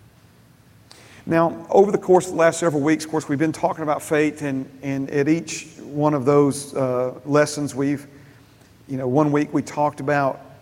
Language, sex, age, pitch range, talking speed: English, male, 40-59, 125-145 Hz, 185 wpm